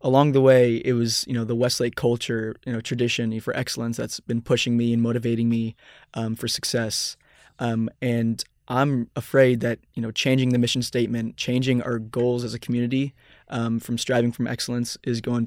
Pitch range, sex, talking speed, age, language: 115-125 Hz, male, 190 wpm, 20-39, English